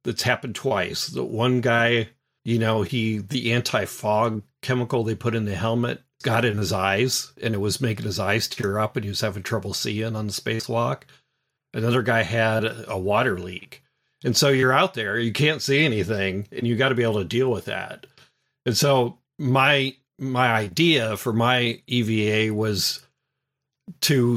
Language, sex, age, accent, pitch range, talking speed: English, male, 40-59, American, 105-135 Hz, 175 wpm